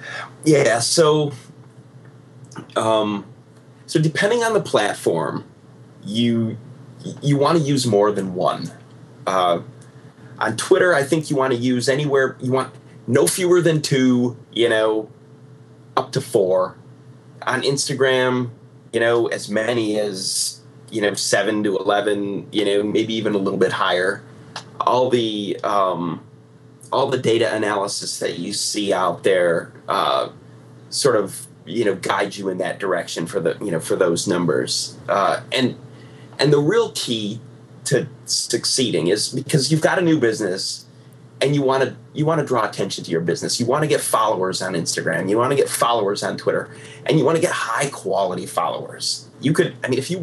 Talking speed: 170 wpm